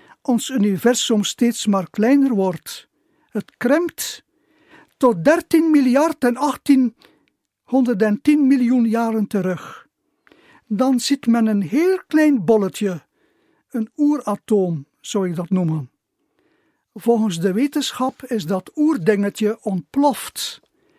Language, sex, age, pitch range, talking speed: Dutch, male, 60-79, 215-290 Hz, 105 wpm